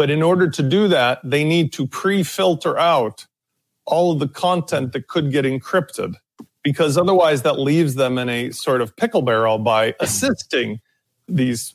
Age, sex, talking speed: 40-59, male, 170 wpm